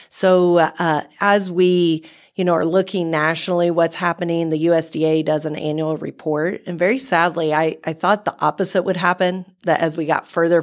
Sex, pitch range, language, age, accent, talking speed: female, 155-175 Hz, English, 40-59, American, 180 wpm